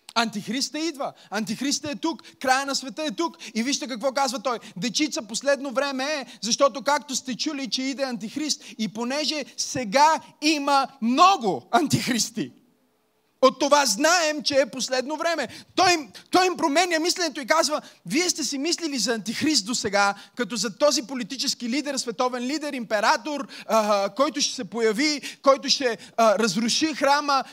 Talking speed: 155 wpm